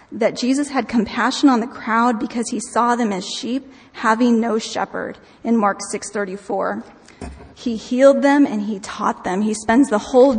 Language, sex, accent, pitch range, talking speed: English, female, American, 215-250 Hz, 185 wpm